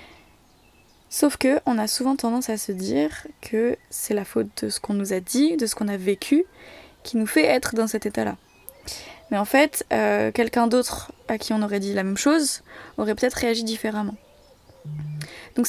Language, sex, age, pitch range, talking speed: French, female, 20-39, 205-250 Hz, 190 wpm